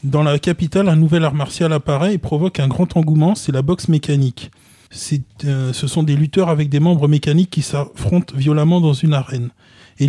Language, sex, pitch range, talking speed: French, male, 130-155 Hz, 200 wpm